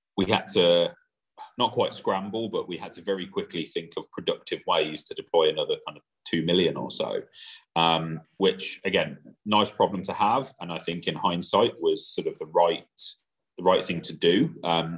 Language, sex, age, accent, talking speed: English, male, 30-49, British, 190 wpm